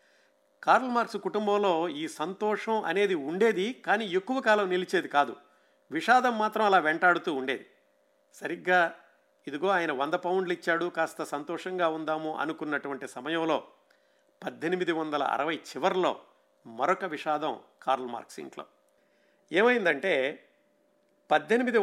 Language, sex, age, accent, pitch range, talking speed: Telugu, male, 50-69, native, 155-200 Hz, 105 wpm